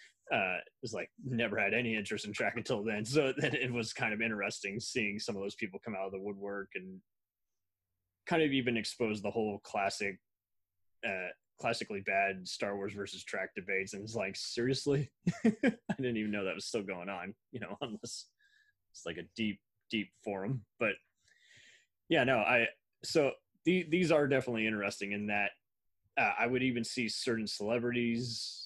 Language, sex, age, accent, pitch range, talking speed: English, male, 20-39, American, 100-115 Hz, 180 wpm